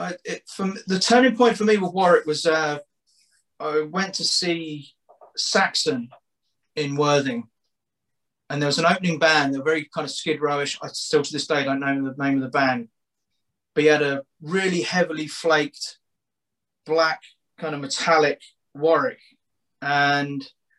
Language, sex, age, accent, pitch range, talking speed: English, male, 30-49, British, 140-160 Hz, 165 wpm